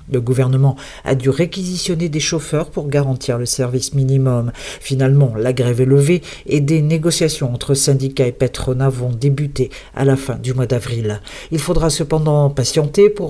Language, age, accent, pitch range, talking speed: Portuguese, 50-69, French, 130-155 Hz, 165 wpm